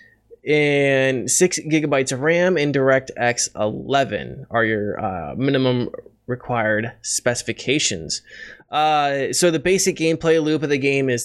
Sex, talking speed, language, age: male, 130 wpm, English, 20-39